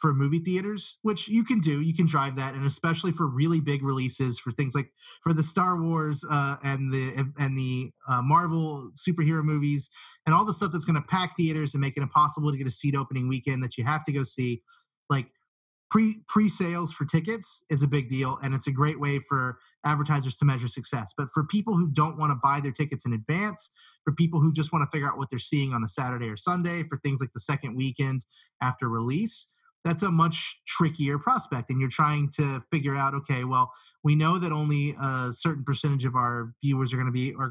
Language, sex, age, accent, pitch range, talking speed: English, male, 30-49, American, 130-160 Hz, 225 wpm